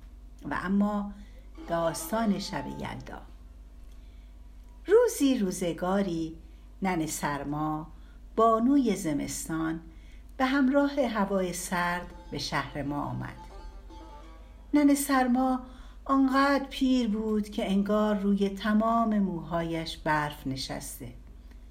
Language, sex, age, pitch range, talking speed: Persian, female, 60-79, 150-220 Hz, 85 wpm